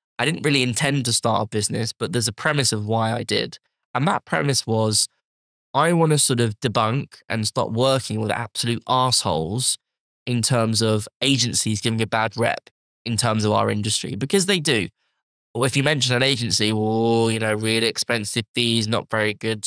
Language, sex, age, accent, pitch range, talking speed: English, male, 10-29, British, 110-135 Hz, 190 wpm